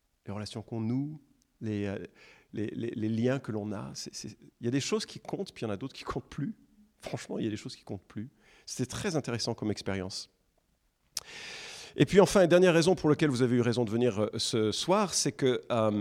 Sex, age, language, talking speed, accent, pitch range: male, 40-59, French, 230 wpm, French, 120-170 Hz